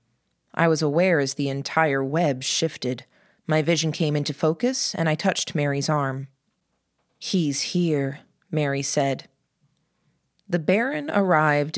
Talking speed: 125 wpm